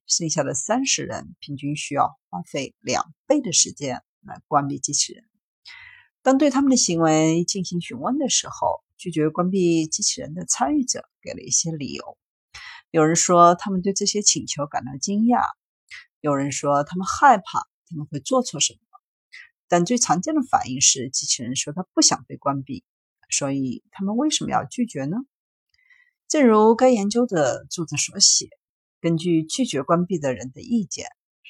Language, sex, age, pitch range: Chinese, female, 50-69, 150-250 Hz